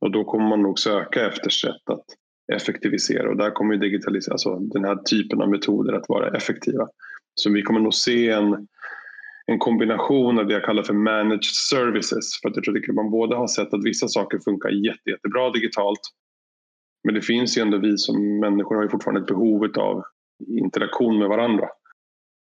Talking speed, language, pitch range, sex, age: 195 wpm, Swedish, 100-110 Hz, male, 20-39